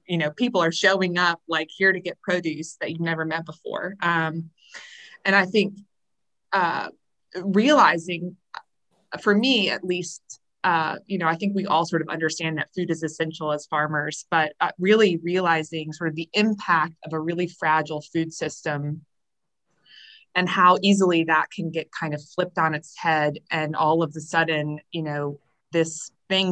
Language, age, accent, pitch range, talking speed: English, 20-39, American, 155-180 Hz, 175 wpm